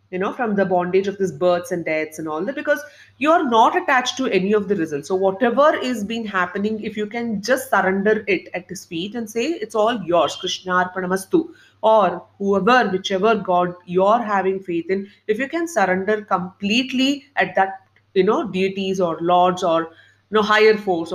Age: 30-49